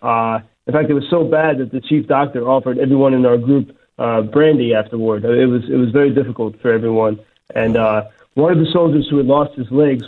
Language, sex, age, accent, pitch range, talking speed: English, male, 30-49, American, 125-155 Hz, 225 wpm